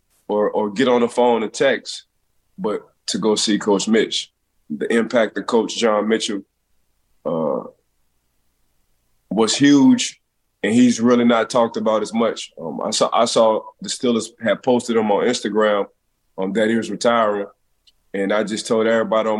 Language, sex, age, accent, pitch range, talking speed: English, male, 20-39, American, 100-115 Hz, 165 wpm